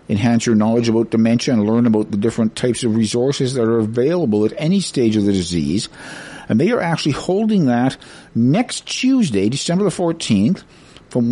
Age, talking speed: 50-69, 180 wpm